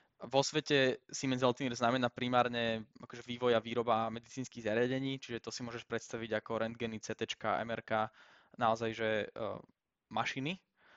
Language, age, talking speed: Slovak, 10-29, 135 wpm